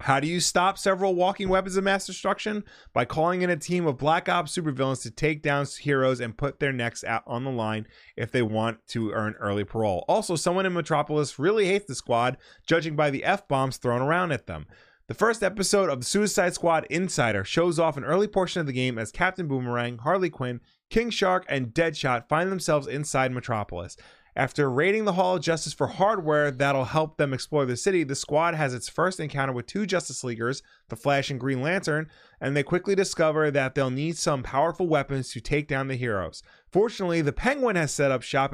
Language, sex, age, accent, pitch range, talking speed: English, male, 20-39, American, 130-175 Hz, 210 wpm